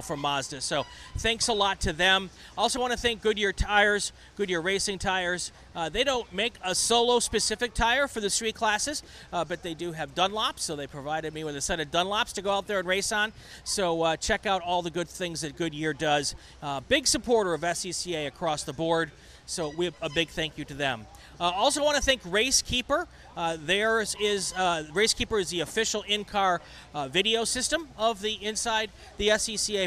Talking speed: 205 wpm